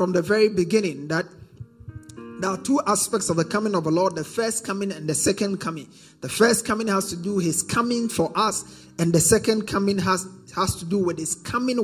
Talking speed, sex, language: 220 wpm, male, English